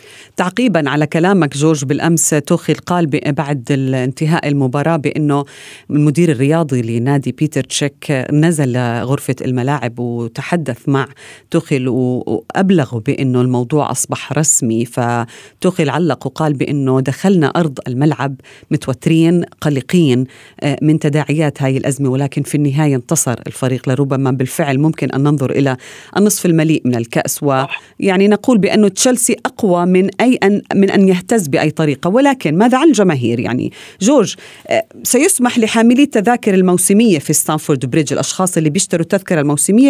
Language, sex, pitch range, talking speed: Arabic, female, 140-200 Hz, 130 wpm